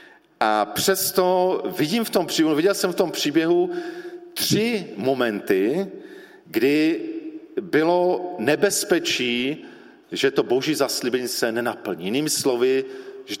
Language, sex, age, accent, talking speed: Czech, male, 40-59, native, 110 wpm